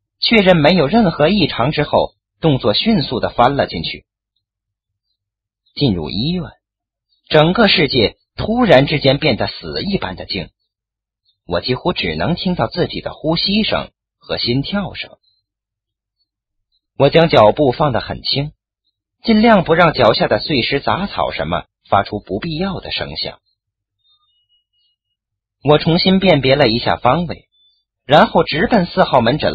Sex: male